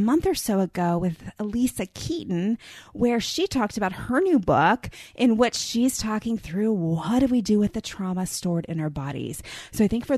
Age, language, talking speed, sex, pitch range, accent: 30-49, English, 205 wpm, female, 165-215 Hz, American